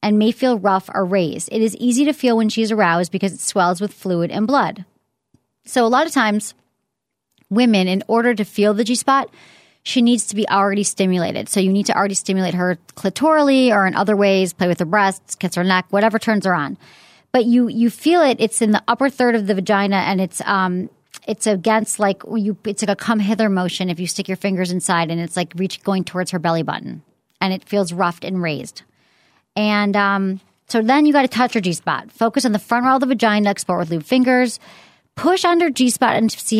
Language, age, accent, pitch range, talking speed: English, 40-59, American, 190-235 Hz, 220 wpm